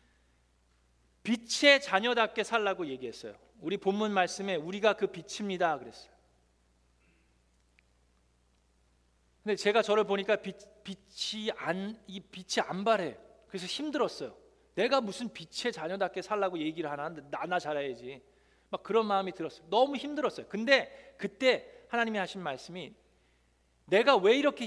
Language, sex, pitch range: Korean, male, 170-255 Hz